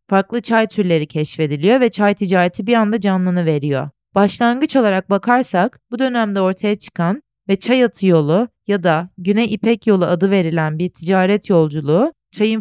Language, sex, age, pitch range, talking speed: Turkish, female, 30-49, 175-220 Hz, 155 wpm